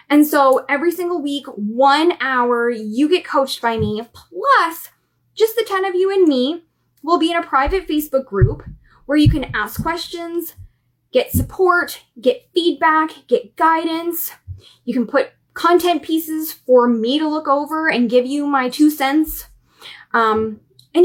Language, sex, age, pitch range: English, female, 10-29, 250-340 Hz